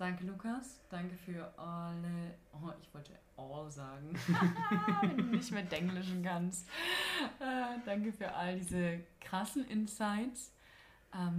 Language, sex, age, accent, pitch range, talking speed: German, female, 20-39, German, 155-180 Hz, 125 wpm